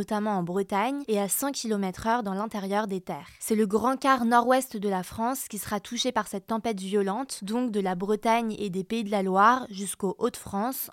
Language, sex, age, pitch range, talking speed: French, female, 20-39, 200-240 Hz, 225 wpm